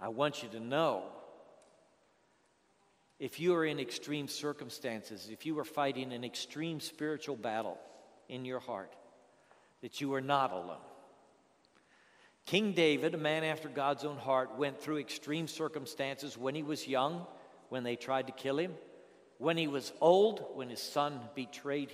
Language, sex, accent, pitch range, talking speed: English, male, American, 145-225 Hz, 155 wpm